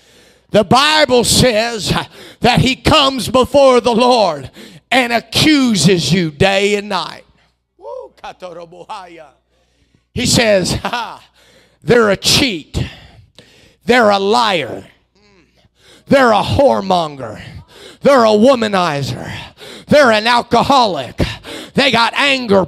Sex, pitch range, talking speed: male, 205-285 Hz, 95 wpm